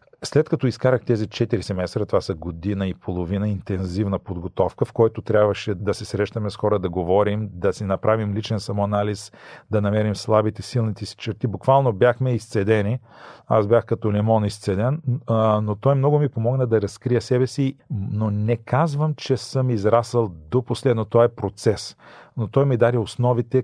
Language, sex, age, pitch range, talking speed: Bulgarian, male, 40-59, 110-135 Hz, 170 wpm